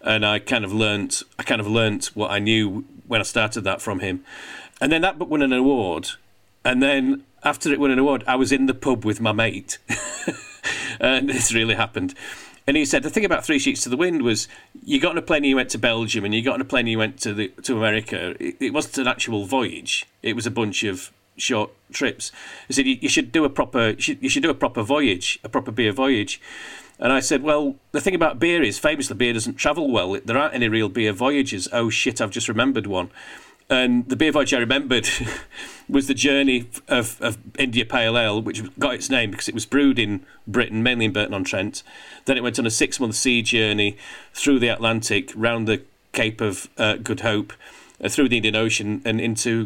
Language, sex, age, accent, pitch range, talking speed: English, male, 40-59, British, 110-140 Hz, 230 wpm